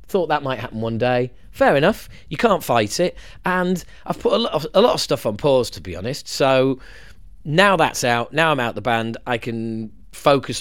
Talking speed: 220 wpm